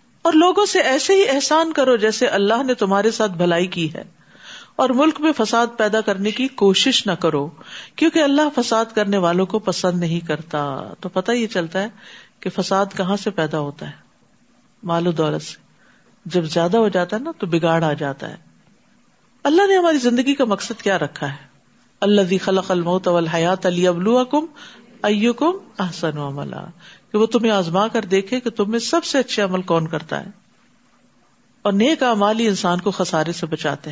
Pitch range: 175-235 Hz